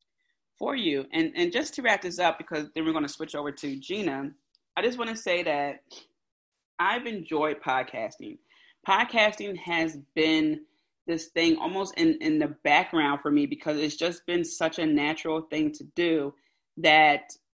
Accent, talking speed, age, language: American, 170 wpm, 30-49, English